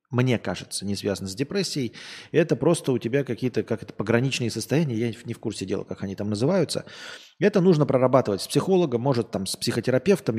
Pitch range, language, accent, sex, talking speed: 115-155 Hz, Russian, native, male, 190 wpm